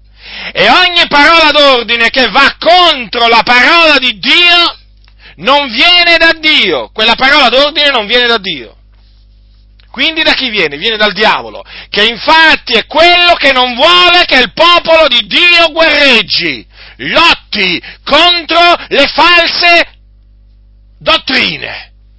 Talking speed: 125 wpm